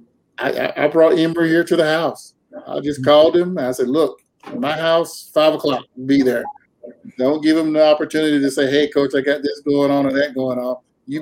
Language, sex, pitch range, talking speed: English, male, 130-160 Hz, 215 wpm